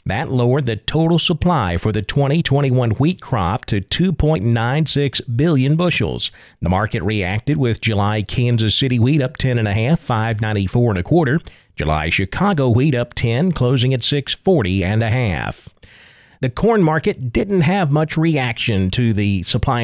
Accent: American